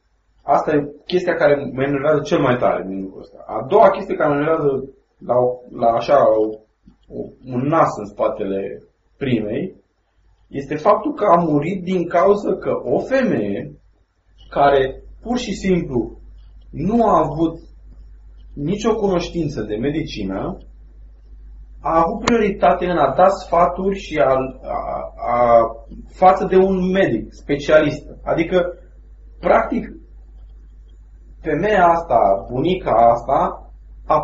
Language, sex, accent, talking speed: Romanian, male, native, 125 wpm